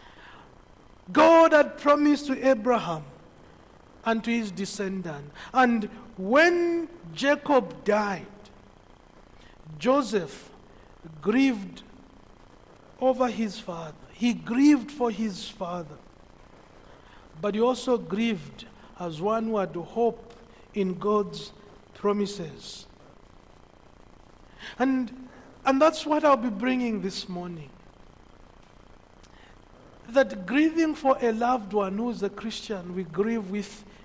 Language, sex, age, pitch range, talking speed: English, male, 50-69, 205-260 Hz, 100 wpm